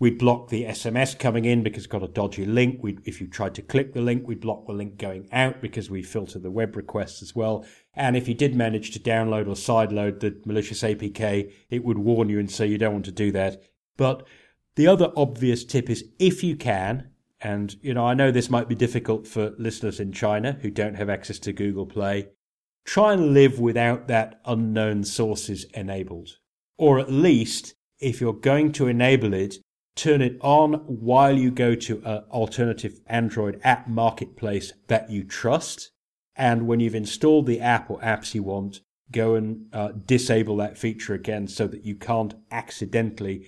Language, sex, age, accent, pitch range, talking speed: English, male, 40-59, British, 105-125 Hz, 195 wpm